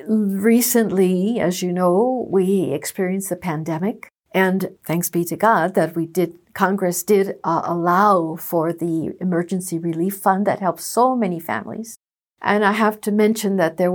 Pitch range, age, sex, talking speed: 170-215 Hz, 60-79, female, 160 wpm